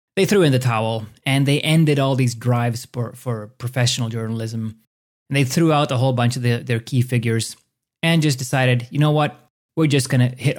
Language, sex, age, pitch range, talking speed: English, male, 30-49, 120-145 Hz, 210 wpm